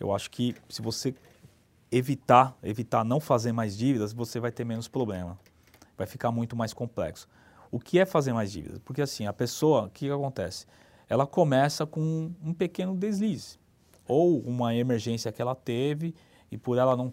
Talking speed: 175 wpm